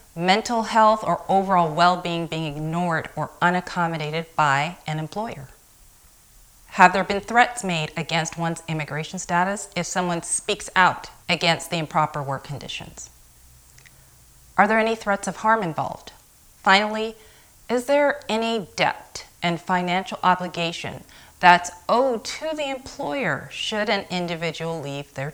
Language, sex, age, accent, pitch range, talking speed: English, female, 30-49, American, 165-210 Hz, 130 wpm